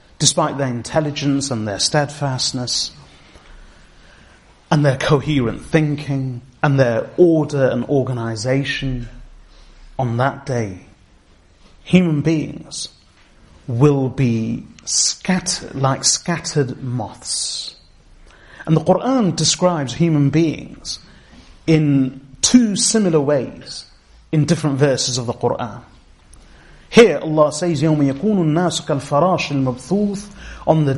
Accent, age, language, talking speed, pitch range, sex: British, 30-49, English, 100 wpm, 125-160 Hz, male